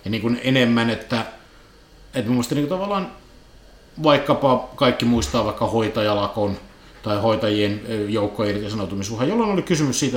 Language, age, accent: Finnish, 50-69, native